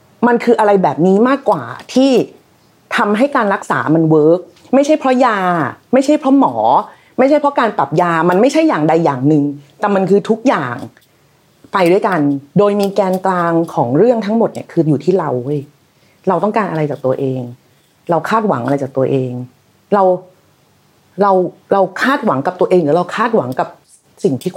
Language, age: Thai, 30-49